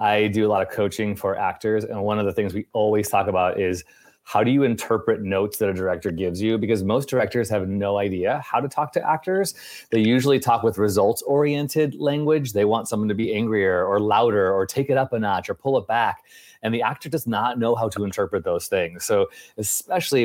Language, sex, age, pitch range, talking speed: English, male, 30-49, 95-130 Hz, 230 wpm